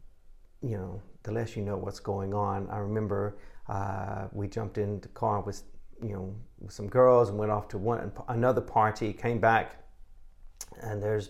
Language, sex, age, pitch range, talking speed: English, male, 40-59, 95-115 Hz, 180 wpm